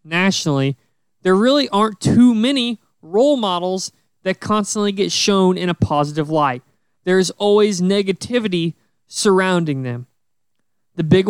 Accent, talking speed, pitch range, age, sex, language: American, 120 wpm, 175-230 Hz, 20-39, male, English